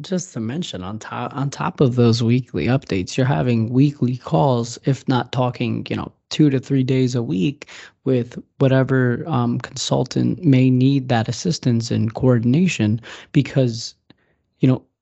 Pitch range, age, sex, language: 120-140 Hz, 20-39, male, English